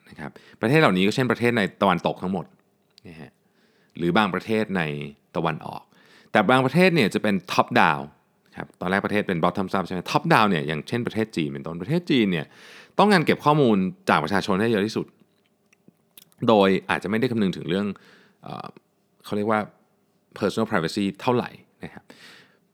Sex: male